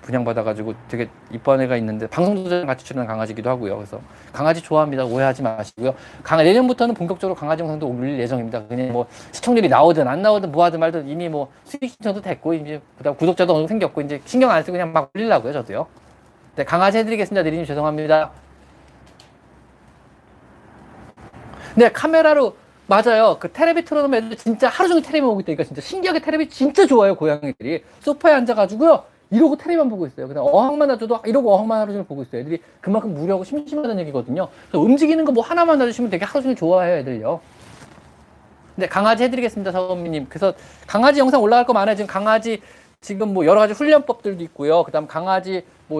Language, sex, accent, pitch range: Korean, male, native, 155-240 Hz